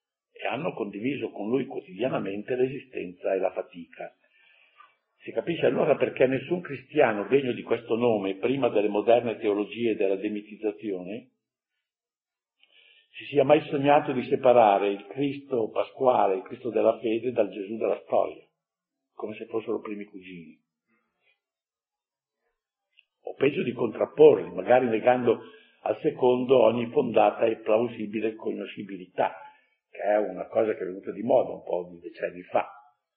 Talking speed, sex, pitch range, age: 135 wpm, male, 105-145 Hz, 60-79